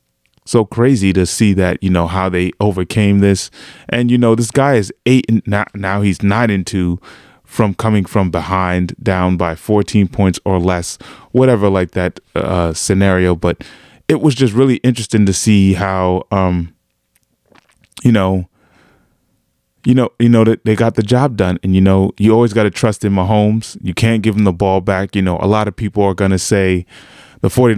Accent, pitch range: American, 90-110 Hz